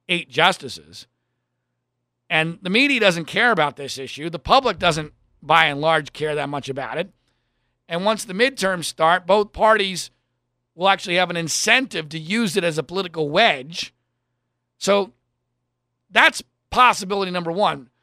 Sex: male